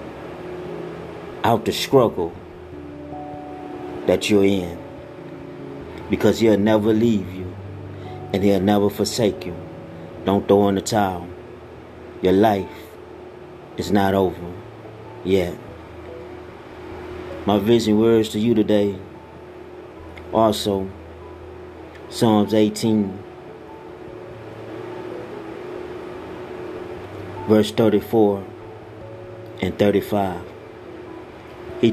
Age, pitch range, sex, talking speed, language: 30-49, 90-110 Hz, male, 75 wpm, English